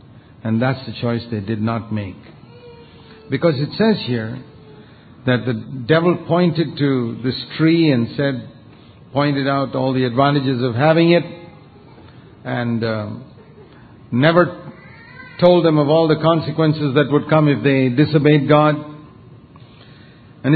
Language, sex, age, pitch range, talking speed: English, male, 50-69, 120-155 Hz, 135 wpm